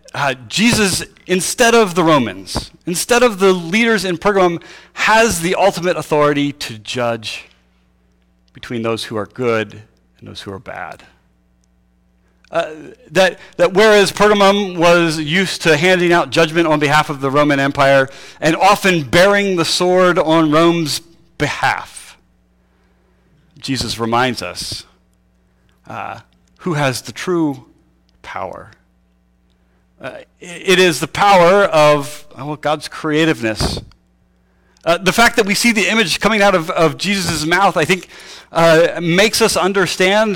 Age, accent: 40-59, American